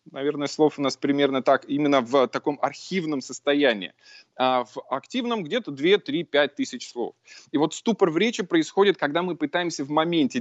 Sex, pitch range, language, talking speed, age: male, 145-210 Hz, Russian, 165 wpm, 20-39